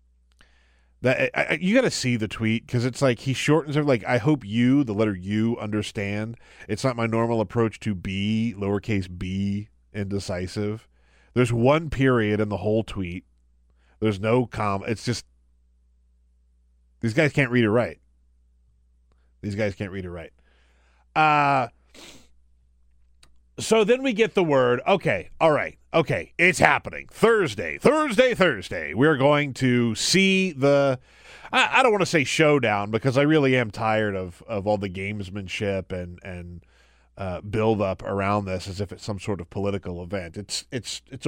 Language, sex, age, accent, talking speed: English, male, 30-49, American, 165 wpm